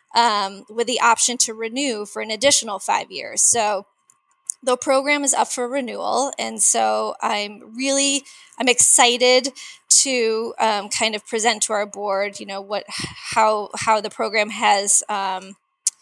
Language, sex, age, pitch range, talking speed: English, female, 20-39, 205-265 Hz, 155 wpm